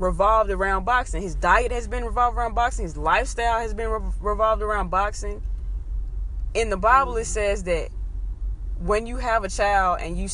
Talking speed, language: 180 wpm, English